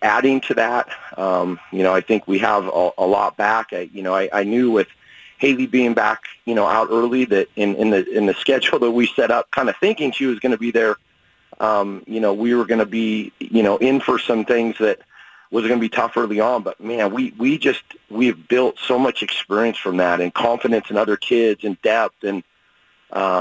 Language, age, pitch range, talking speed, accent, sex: English, 40-59, 100-120 Hz, 235 wpm, American, male